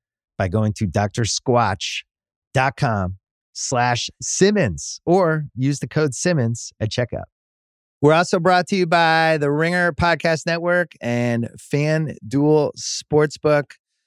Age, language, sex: 30-49, English, male